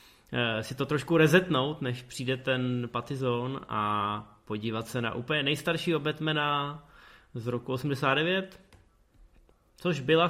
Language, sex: Czech, male